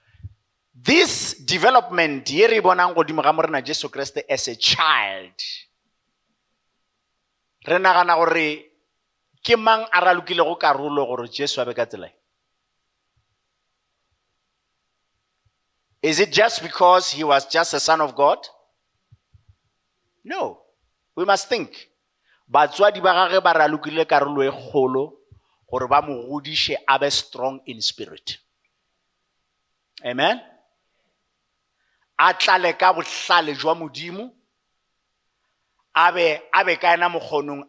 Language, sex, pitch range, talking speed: English, male, 140-190 Hz, 100 wpm